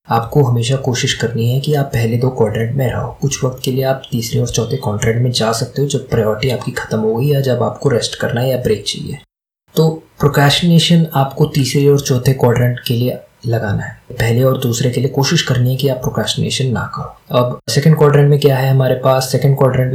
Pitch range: 120-140 Hz